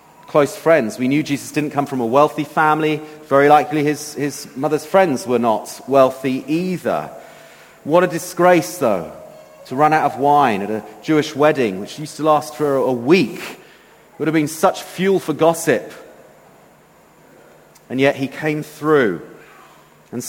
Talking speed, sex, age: 155 wpm, male, 30-49